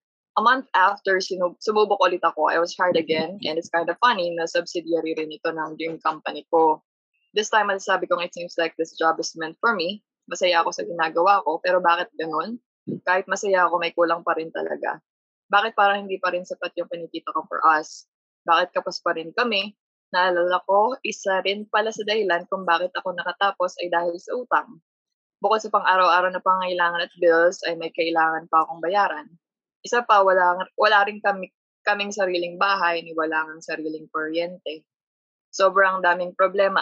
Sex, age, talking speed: female, 20-39, 185 wpm